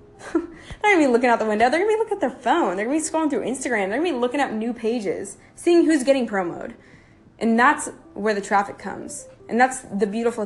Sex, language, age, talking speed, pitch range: female, English, 10-29, 235 wpm, 195-265 Hz